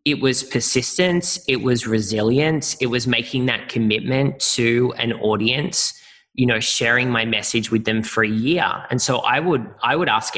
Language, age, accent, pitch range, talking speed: English, 20-39, Australian, 110-130 Hz, 180 wpm